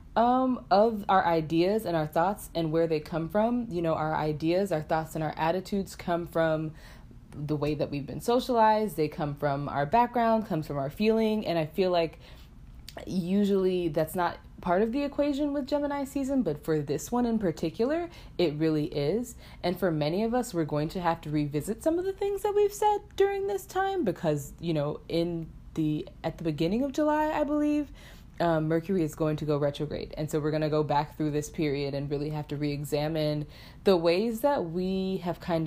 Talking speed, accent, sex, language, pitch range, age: 205 wpm, American, female, English, 155-210 Hz, 20-39